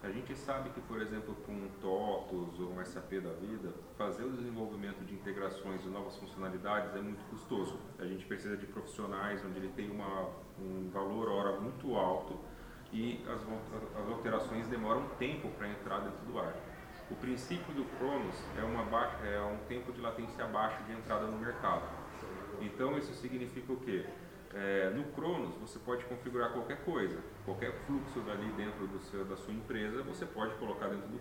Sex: male